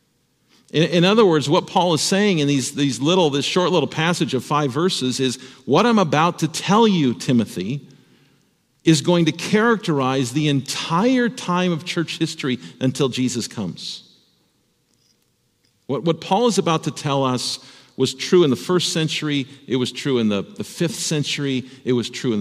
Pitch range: 120-155 Hz